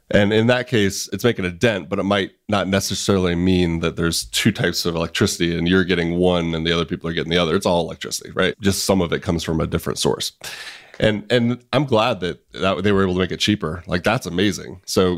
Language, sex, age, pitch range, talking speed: English, male, 30-49, 90-105 Hz, 245 wpm